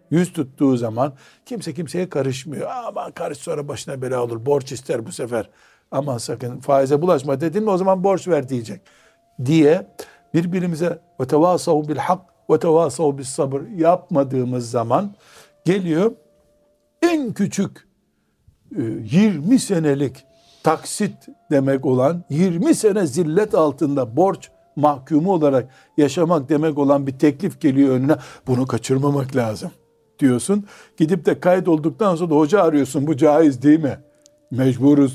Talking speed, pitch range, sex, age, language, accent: 130 wpm, 130-170 Hz, male, 60-79, Turkish, native